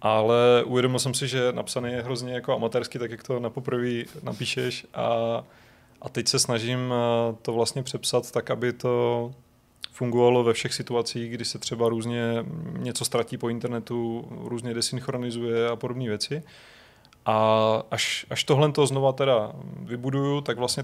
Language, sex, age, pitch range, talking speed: Czech, male, 30-49, 120-130 Hz, 155 wpm